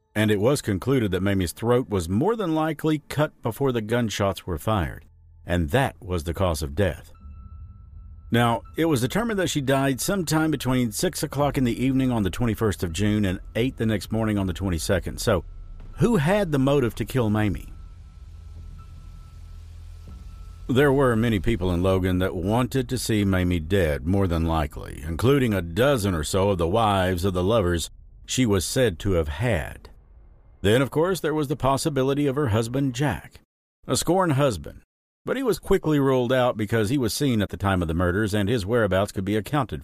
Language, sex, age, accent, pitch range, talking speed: English, male, 50-69, American, 90-125 Hz, 190 wpm